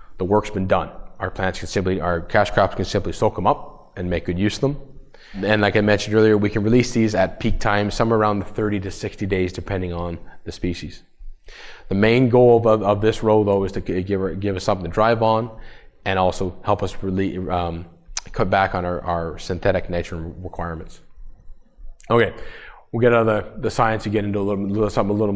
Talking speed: 215 wpm